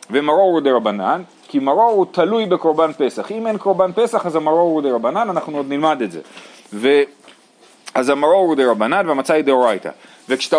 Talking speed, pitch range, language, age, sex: 165 wpm, 140-215 Hz, Hebrew, 40-59, male